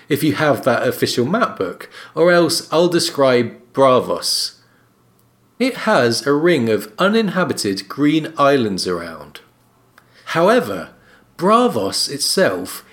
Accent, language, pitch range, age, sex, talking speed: British, English, 140-220 Hz, 40-59, male, 110 wpm